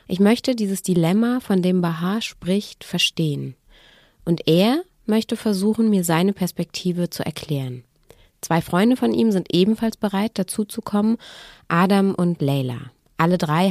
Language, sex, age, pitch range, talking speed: German, female, 20-39, 170-210 Hz, 145 wpm